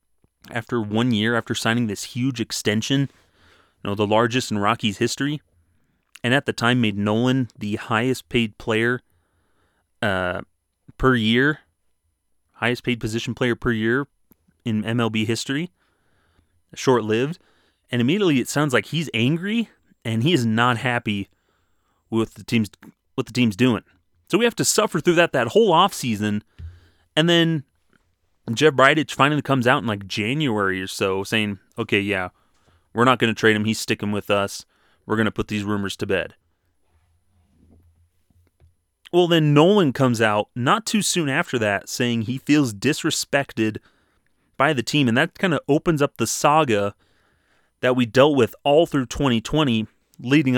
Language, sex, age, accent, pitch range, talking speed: English, male, 30-49, American, 100-135 Hz, 160 wpm